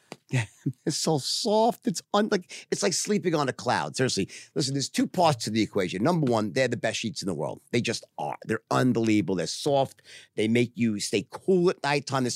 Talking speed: 220 wpm